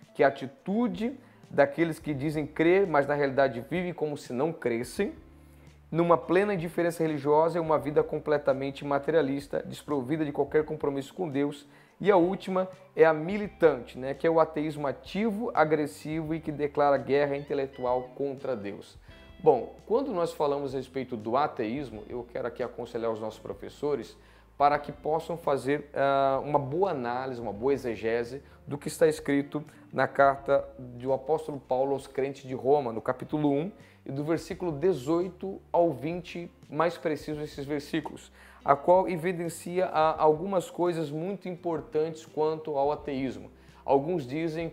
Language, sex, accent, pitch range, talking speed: Portuguese, male, Brazilian, 135-165 Hz, 155 wpm